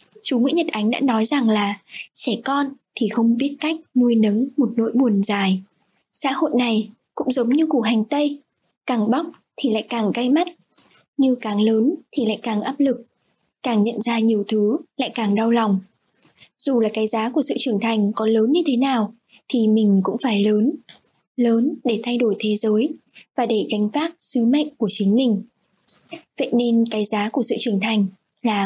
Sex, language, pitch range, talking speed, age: female, Vietnamese, 220-275 Hz, 200 wpm, 10-29